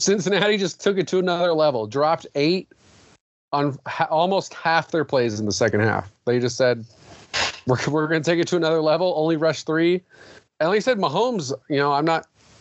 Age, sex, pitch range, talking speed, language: 30-49, male, 125-165 Hz, 200 wpm, English